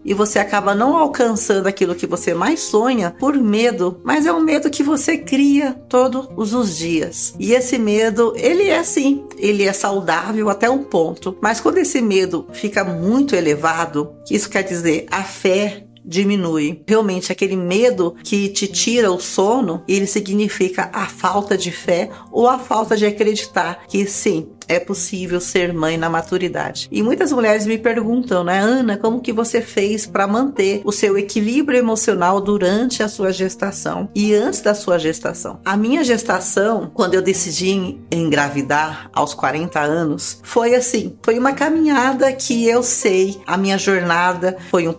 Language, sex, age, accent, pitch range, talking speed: Portuguese, female, 50-69, Brazilian, 180-235 Hz, 165 wpm